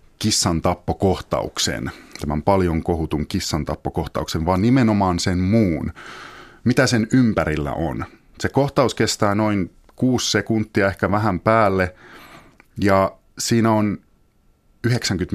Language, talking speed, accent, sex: Finnish, 110 wpm, native, male